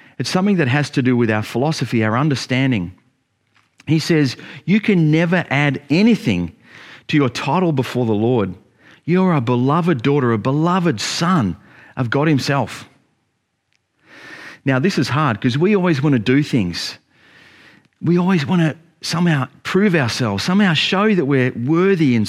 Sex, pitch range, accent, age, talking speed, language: male, 120-175 Hz, Australian, 40-59, 155 wpm, English